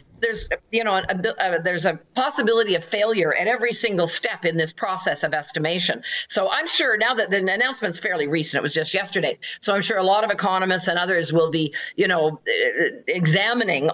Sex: female